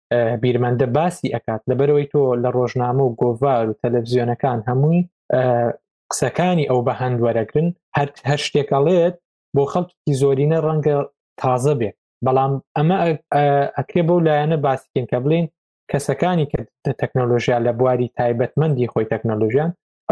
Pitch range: 125-145 Hz